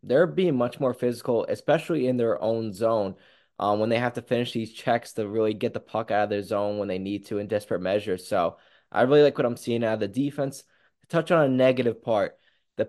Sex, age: male, 20-39